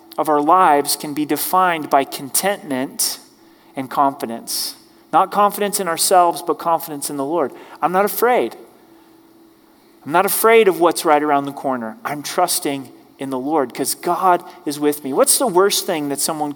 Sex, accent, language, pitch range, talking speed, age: male, American, English, 150-210 Hz, 170 wpm, 30-49